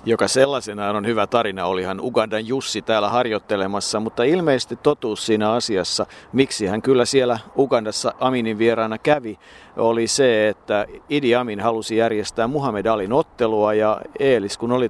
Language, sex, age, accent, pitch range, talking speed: Finnish, male, 50-69, native, 110-125 Hz, 150 wpm